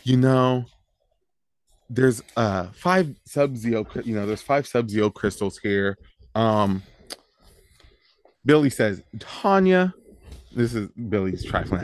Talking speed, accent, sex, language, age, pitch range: 110 wpm, American, male, English, 30-49, 100-155 Hz